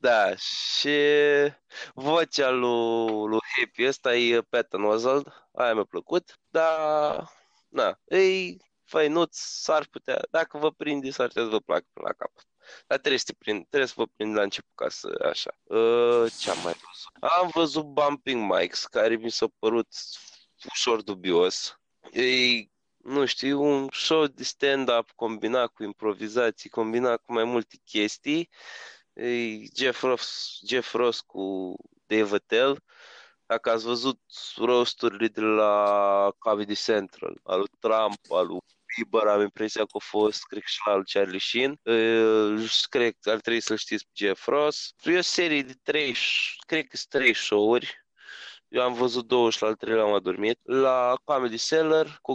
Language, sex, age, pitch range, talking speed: Romanian, male, 20-39, 110-150 Hz, 165 wpm